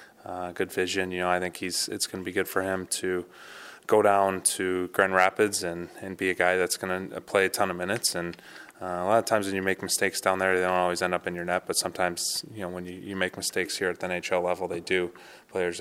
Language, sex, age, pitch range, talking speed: English, male, 20-39, 90-95 Hz, 270 wpm